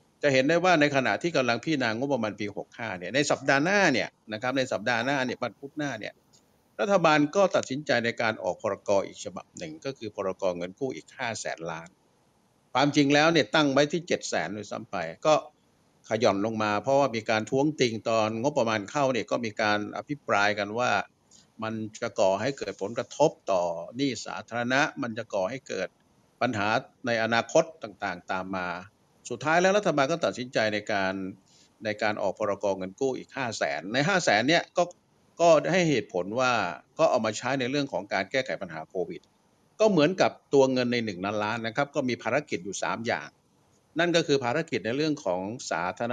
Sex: male